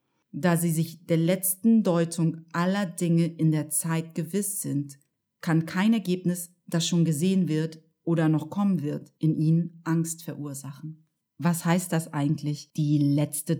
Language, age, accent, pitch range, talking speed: German, 30-49, German, 155-180 Hz, 150 wpm